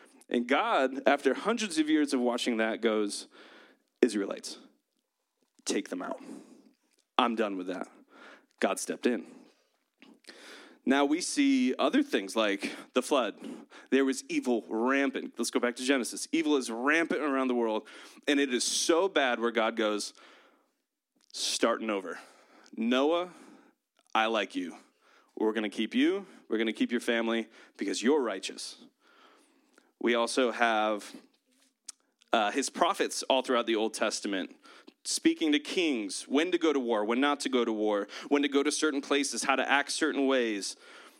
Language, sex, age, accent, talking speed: English, male, 30-49, American, 155 wpm